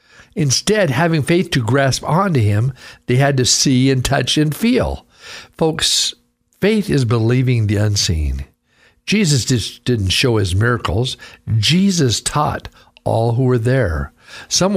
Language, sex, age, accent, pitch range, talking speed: English, male, 60-79, American, 120-160 Hz, 135 wpm